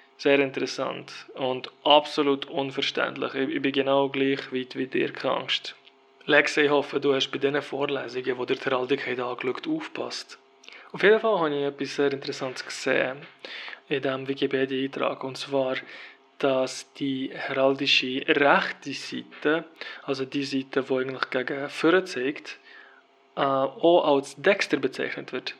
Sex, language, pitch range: male, German, 135-150 Hz